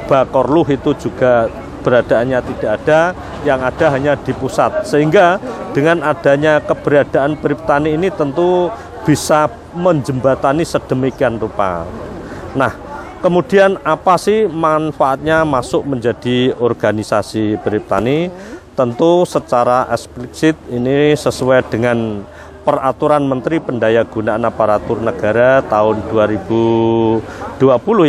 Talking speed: 95 wpm